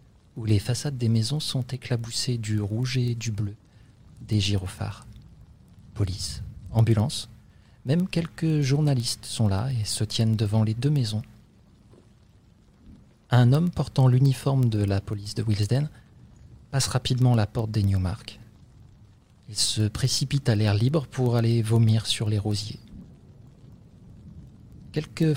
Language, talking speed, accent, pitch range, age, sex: French, 130 wpm, French, 110-130 Hz, 40-59, male